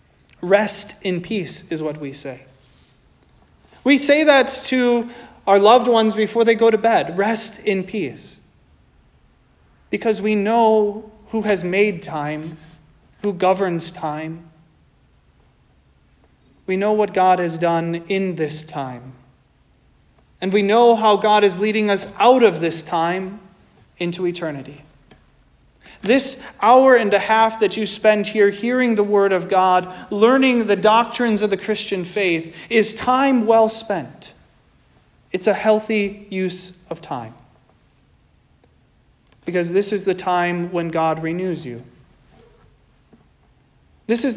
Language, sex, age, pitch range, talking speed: English, male, 30-49, 170-220 Hz, 130 wpm